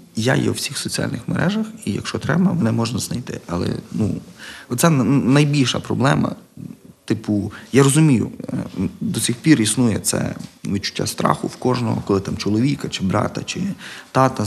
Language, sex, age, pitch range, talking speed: Ukrainian, male, 30-49, 105-125 Hz, 150 wpm